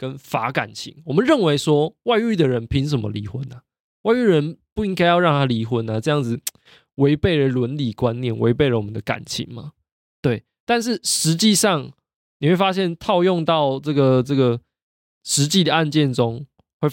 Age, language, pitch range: 20-39, Chinese, 115-155 Hz